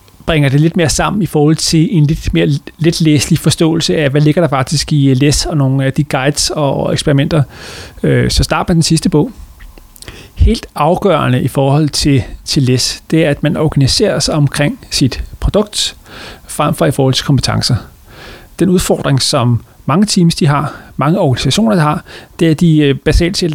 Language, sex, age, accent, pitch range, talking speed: English, male, 30-49, Danish, 130-165 Hz, 180 wpm